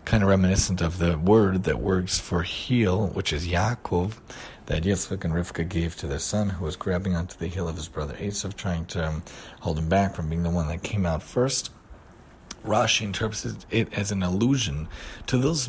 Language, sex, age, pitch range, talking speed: English, male, 40-59, 90-110 Hz, 200 wpm